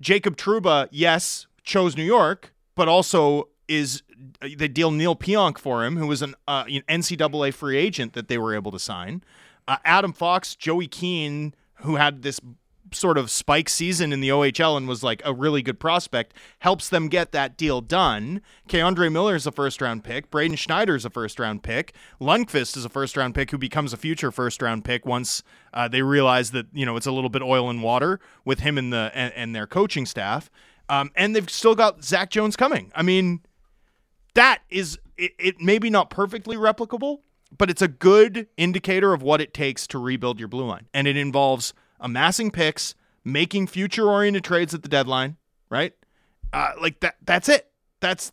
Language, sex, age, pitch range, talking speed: English, male, 30-49, 135-180 Hz, 195 wpm